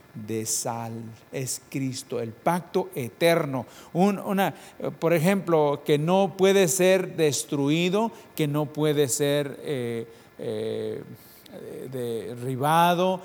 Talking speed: 105 wpm